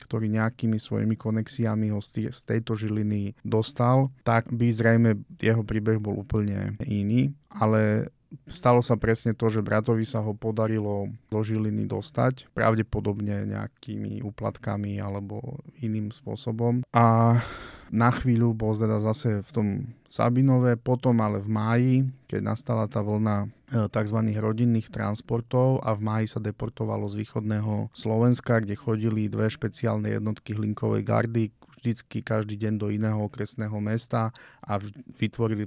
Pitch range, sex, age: 105-120 Hz, male, 30-49